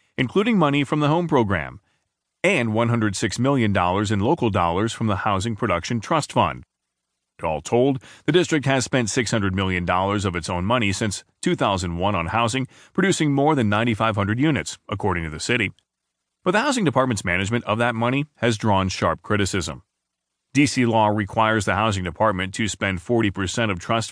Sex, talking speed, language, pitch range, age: male, 165 wpm, English, 95-125 Hz, 30-49